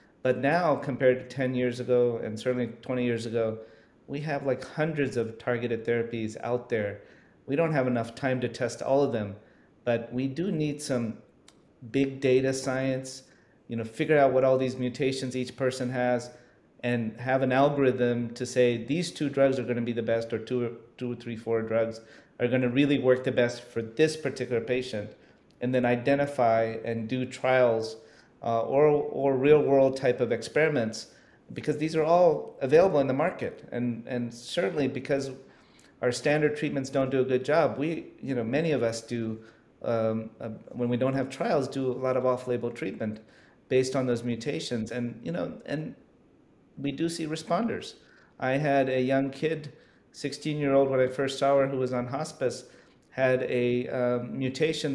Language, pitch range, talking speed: English, 120-135 Hz, 180 wpm